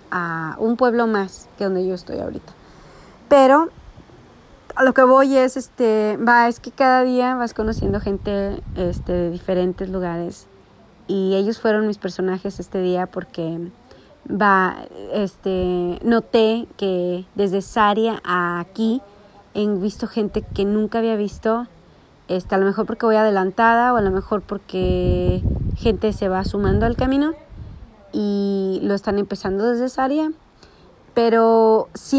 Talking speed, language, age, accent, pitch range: 145 wpm, Spanish, 30-49, Mexican, 185-225 Hz